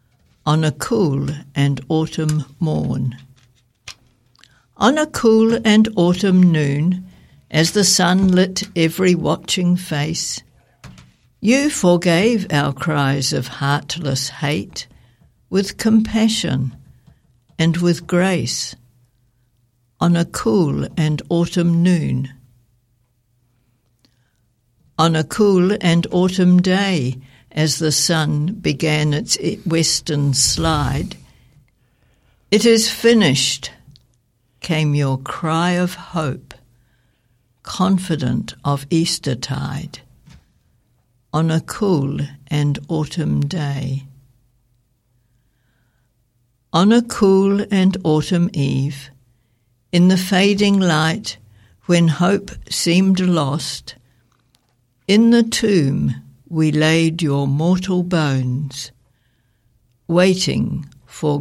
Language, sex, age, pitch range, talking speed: English, female, 60-79, 125-175 Hz, 90 wpm